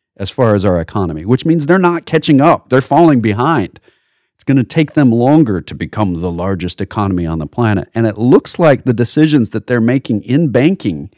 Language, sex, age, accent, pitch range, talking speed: English, male, 40-59, American, 105-145 Hz, 210 wpm